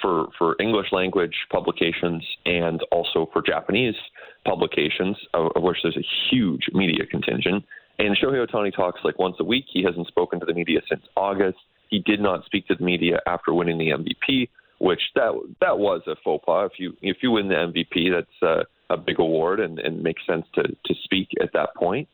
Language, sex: English, male